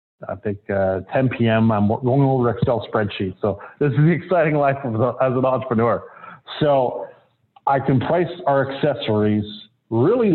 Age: 40-59